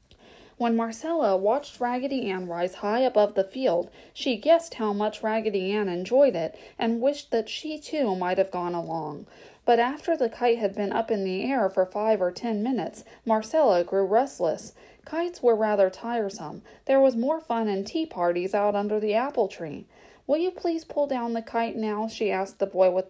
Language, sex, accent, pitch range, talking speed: English, female, American, 195-260 Hz, 190 wpm